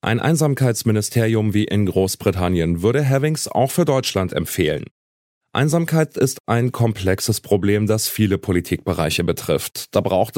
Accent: German